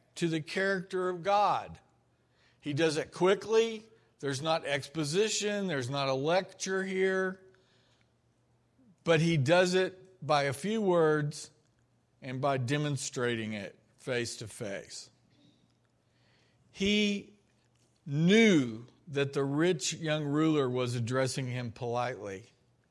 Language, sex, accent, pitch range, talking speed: English, male, American, 120-175 Hz, 115 wpm